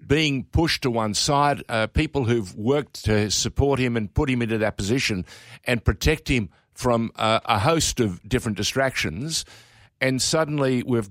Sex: male